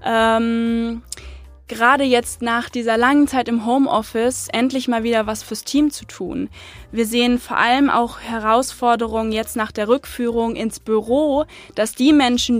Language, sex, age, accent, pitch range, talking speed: German, female, 20-39, German, 215-255 Hz, 150 wpm